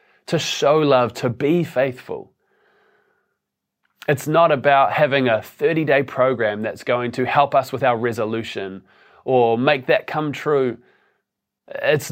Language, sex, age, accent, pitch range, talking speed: English, male, 20-39, Australian, 125-160 Hz, 135 wpm